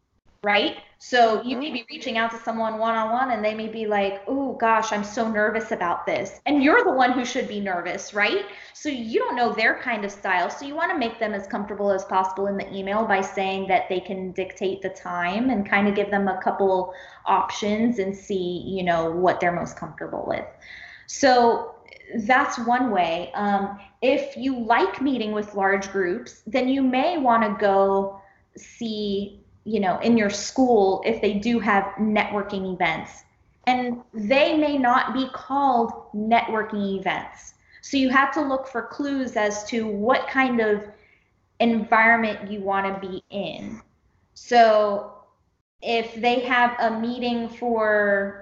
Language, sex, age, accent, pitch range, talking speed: English, female, 20-39, American, 195-240 Hz, 175 wpm